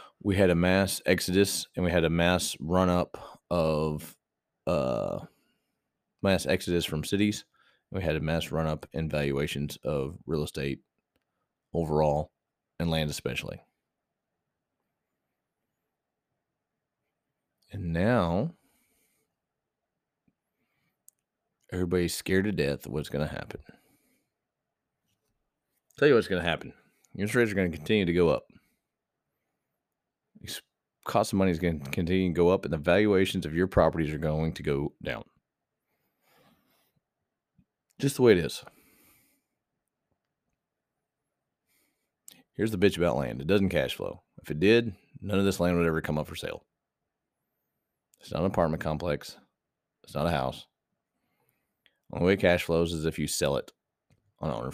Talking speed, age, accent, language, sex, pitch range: 140 wpm, 30-49, American, English, male, 80-95 Hz